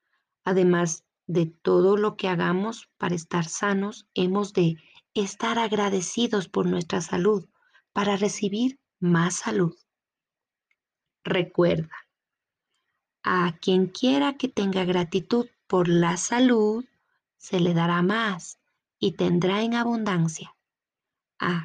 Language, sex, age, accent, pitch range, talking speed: Spanish, female, 30-49, Mexican, 180-220 Hz, 110 wpm